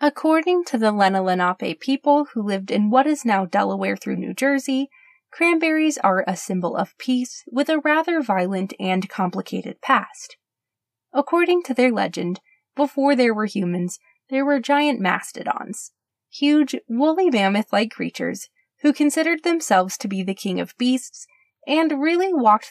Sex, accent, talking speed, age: female, American, 150 wpm, 20-39